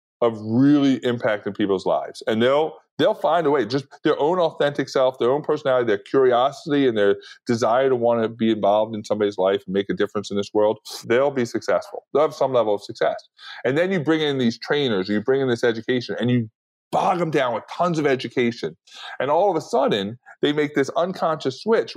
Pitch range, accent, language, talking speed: 115-150 Hz, American, English, 220 wpm